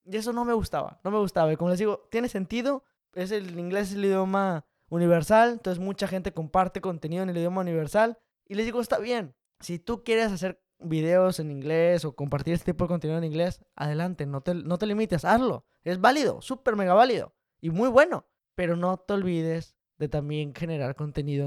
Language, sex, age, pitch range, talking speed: Spanish, male, 20-39, 155-195 Hz, 205 wpm